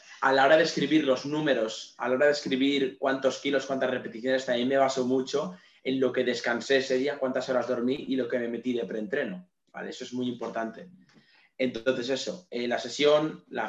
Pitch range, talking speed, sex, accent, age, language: 120-140 Hz, 210 wpm, male, Spanish, 20-39, Spanish